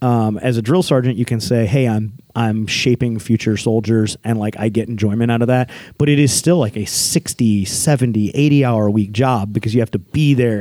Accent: American